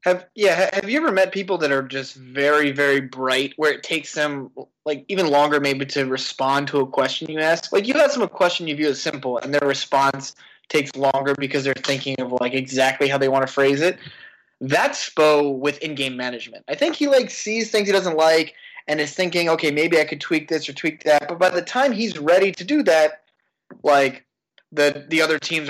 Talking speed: 225 wpm